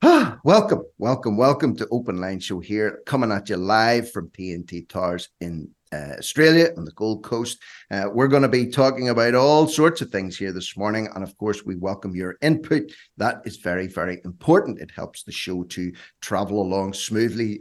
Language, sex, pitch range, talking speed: English, male, 100-145 Hz, 190 wpm